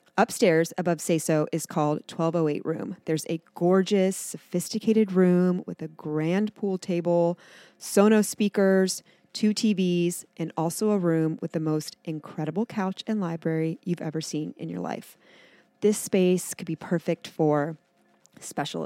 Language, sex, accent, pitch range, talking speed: English, female, American, 165-205 Hz, 145 wpm